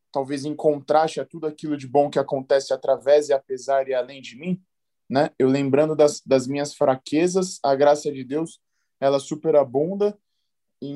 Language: Portuguese